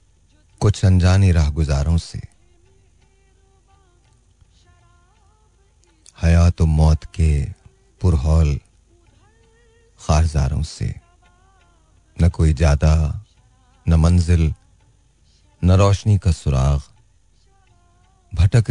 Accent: native